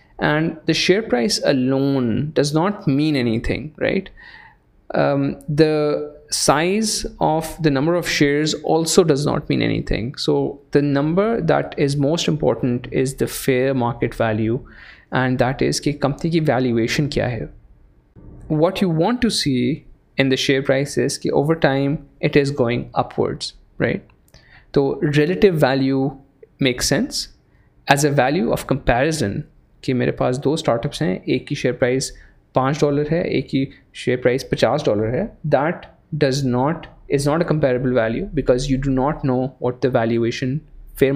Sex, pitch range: male, 130-155 Hz